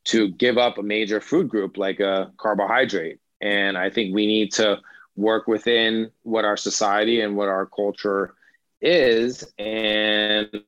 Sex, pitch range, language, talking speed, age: male, 105-115 Hz, Persian, 150 wpm, 30-49